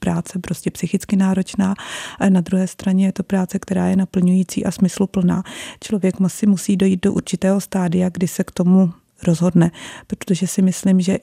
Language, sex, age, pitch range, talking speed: Czech, female, 30-49, 180-195 Hz, 170 wpm